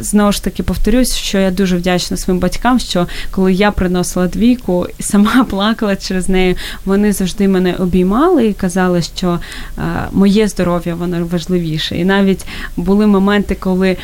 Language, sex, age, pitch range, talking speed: Ukrainian, female, 20-39, 180-205 Hz, 150 wpm